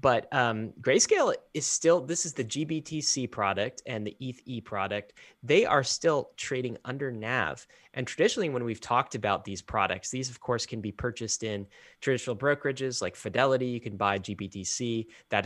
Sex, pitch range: male, 115-150 Hz